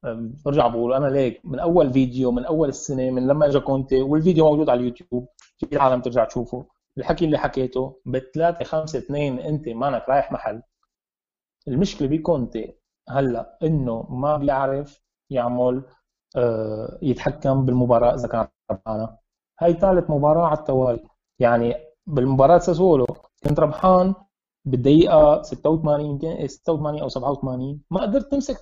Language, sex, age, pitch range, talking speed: Arabic, male, 30-49, 125-160 Hz, 135 wpm